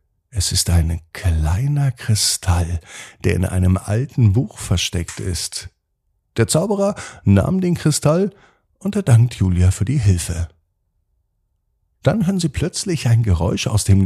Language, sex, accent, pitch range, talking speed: German, male, German, 90-135 Hz, 130 wpm